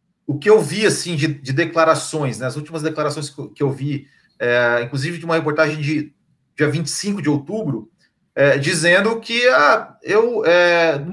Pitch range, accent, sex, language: 145-195 Hz, Brazilian, male, Portuguese